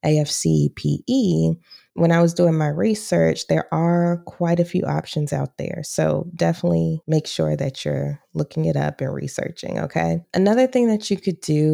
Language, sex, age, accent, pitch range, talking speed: English, female, 20-39, American, 140-195 Hz, 170 wpm